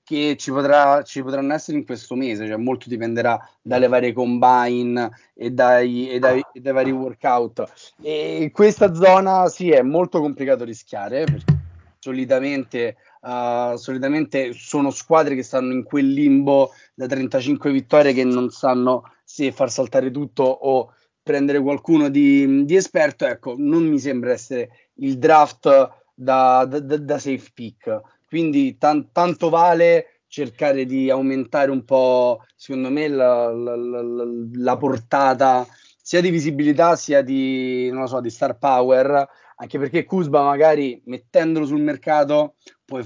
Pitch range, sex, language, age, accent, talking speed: 125-150 Hz, male, Italian, 30-49, native, 150 wpm